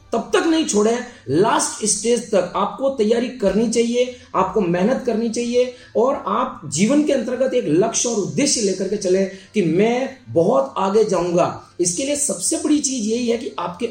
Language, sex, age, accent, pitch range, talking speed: Hindi, male, 30-49, native, 170-225 Hz, 175 wpm